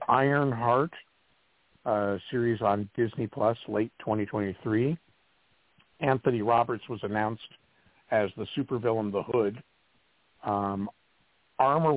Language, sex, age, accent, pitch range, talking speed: English, male, 50-69, American, 105-125 Hz, 100 wpm